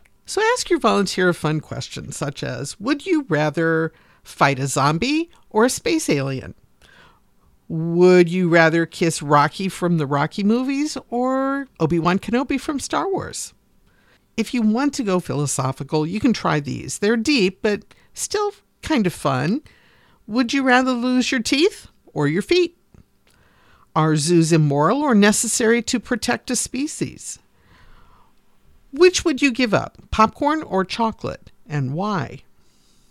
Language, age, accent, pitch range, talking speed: English, 50-69, American, 155-240 Hz, 145 wpm